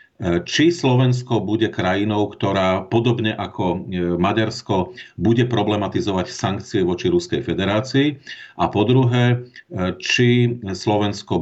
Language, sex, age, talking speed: Czech, male, 50-69, 95 wpm